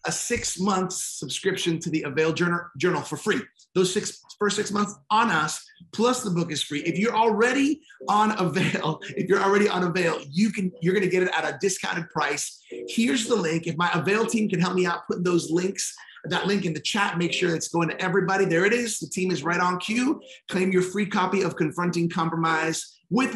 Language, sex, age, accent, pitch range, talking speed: English, male, 30-49, American, 160-195 Hz, 220 wpm